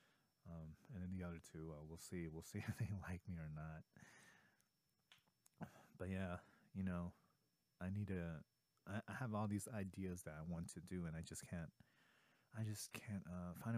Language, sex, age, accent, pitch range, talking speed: English, male, 30-49, American, 85-105 Hz, 190 wpm